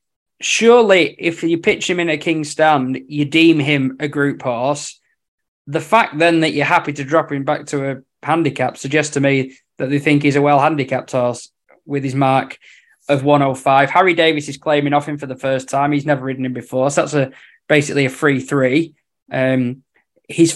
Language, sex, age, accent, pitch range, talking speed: English, male, 20-39, British, 135-155 Hz, 195 wpm